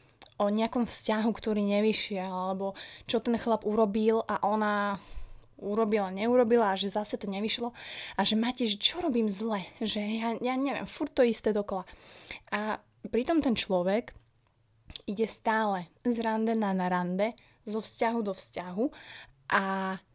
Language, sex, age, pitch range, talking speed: Slovak, female, 20-39, 195-230 Hz, 145 wpm